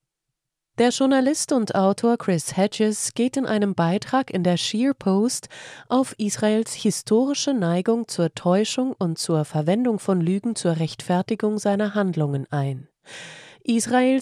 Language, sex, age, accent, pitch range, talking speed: German, female, 30-49, German, 170-215 Hz, 130 wpm